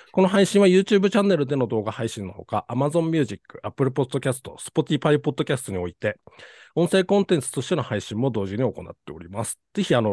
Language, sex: Japanese, male